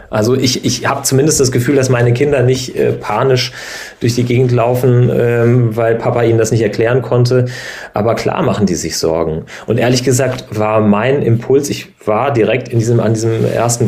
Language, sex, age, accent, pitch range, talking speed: German, male, 40-59, German, 110-130 Hz, 175 wpm